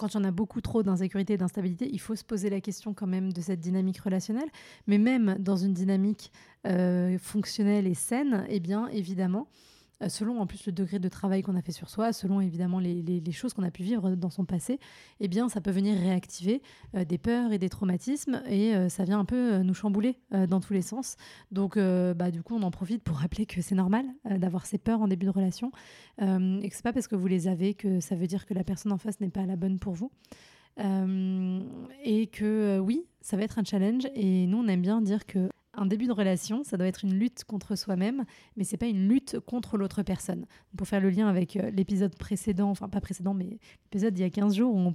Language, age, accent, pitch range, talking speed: French, 30-49, French, 190-215 Hz, 250 wpm